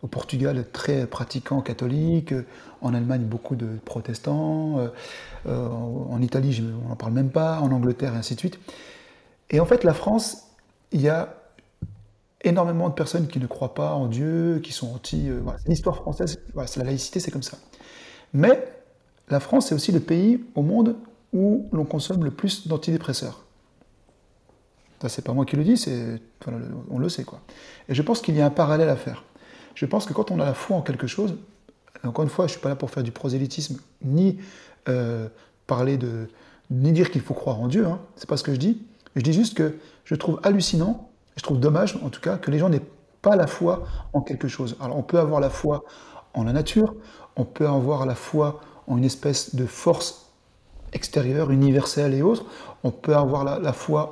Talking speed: 205 wpm